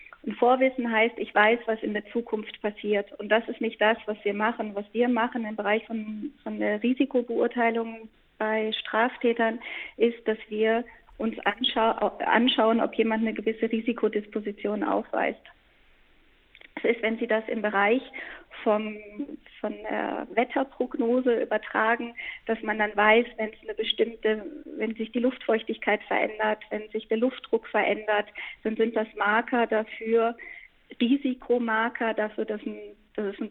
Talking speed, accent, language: 145 wpm, German, German